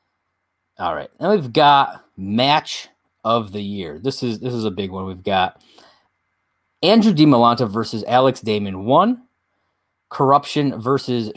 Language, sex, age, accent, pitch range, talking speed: English, male, 30-49, American, 105-140 Hz, 135 wpm